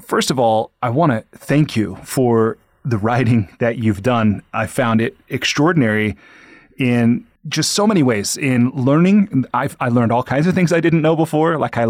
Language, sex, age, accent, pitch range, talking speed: English, male, 30-49, American, 120-150 Hz, 185 wpm